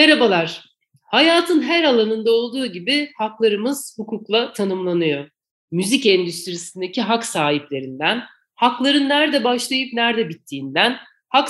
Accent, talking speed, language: native, 100 wpm, Turkish